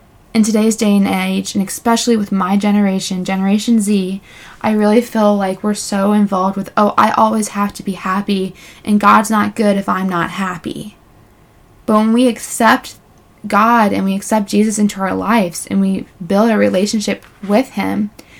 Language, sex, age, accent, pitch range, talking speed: English, female, 20-39, American, 195-220 Hz, 175 wpm